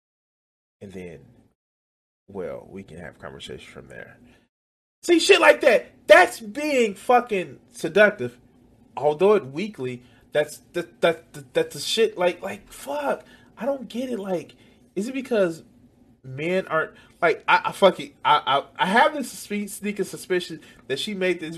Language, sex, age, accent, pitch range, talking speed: English, male, 30-49, American, 120-190 Hz, 155 wpm